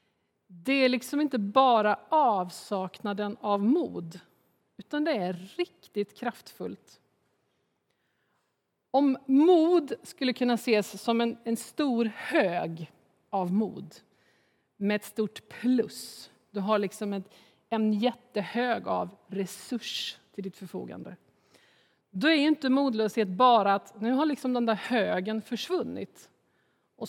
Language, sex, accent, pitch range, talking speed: Swedish, female, native, 200-250 Hz, 115 wpm